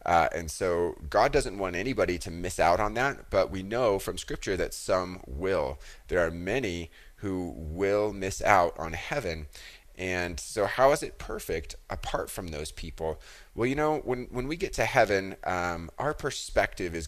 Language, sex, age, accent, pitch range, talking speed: English, male, 30-49, American, 80-95 Hz, 185 wpm